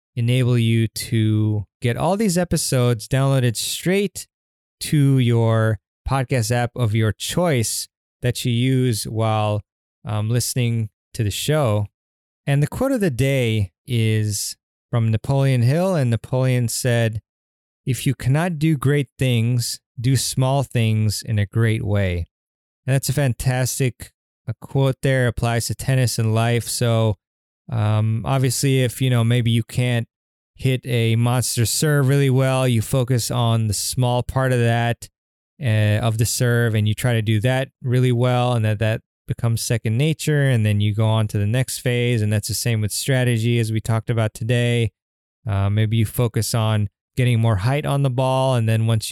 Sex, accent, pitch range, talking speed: male, American, 110-130 Hz, 165 wpm